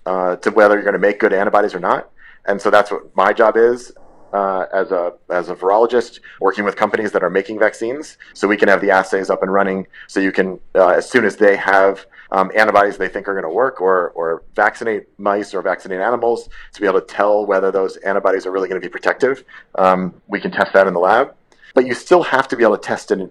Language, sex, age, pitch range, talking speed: English, male, 30-49, 95-115 Hz, 250 wpm